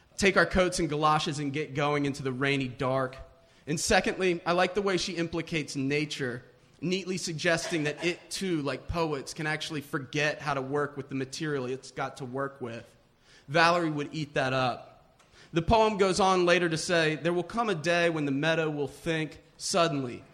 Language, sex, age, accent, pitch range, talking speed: English, male, 30-49, American, 140-165 Hz, 190 wpm